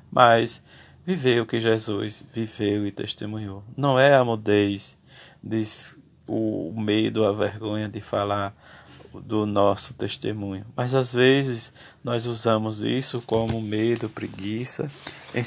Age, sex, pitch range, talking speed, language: 20-39, male, 110-130 Hz, 125 wpm, Portuguese